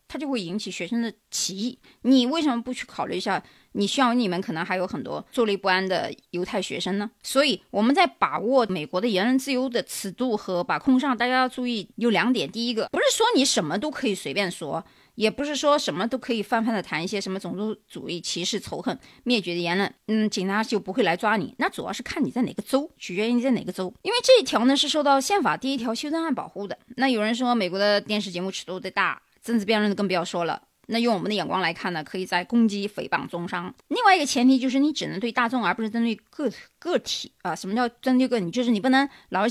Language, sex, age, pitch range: Chinese, female, 20-39, 195-255 Hz